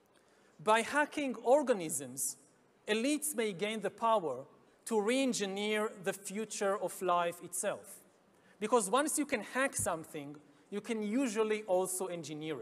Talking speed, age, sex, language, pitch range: 125 wpm, 40-59, male, English, 190-240 Hz